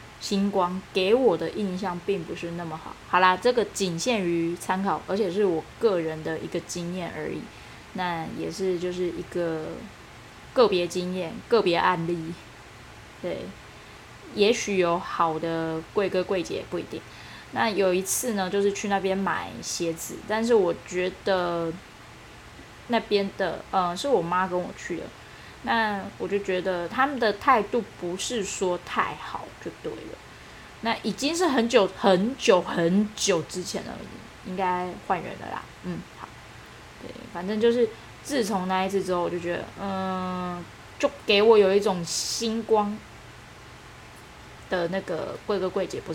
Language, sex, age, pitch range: Chinese, female, 20-39, 175-210 Hz